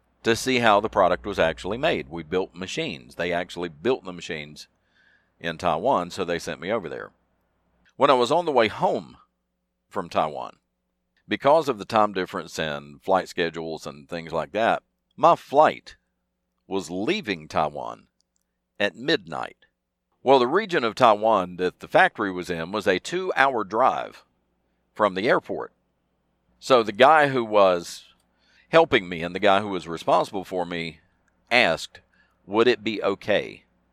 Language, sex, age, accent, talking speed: English, male, 50-69, American, 155 wpm